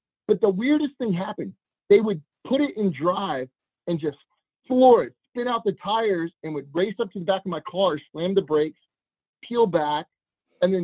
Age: 30-49